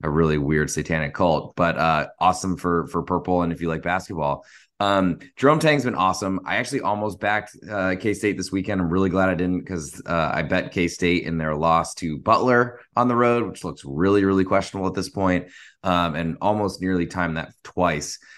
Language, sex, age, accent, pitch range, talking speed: English, male, 20-39, American, 80-100 Hz, 205 wpm